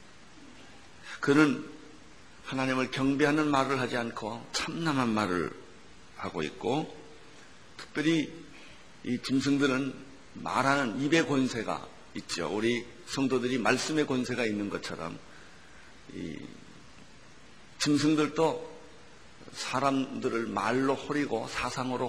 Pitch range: 115-135 Hz